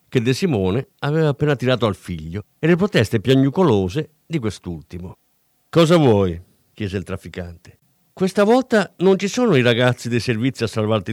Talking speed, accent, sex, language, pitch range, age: 160 wpm, native, male, Italian, 105-155 Hz, 50-69